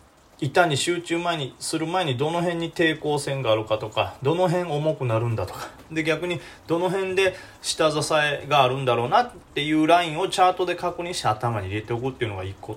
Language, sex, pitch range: Japanese, male, 110-160 Hz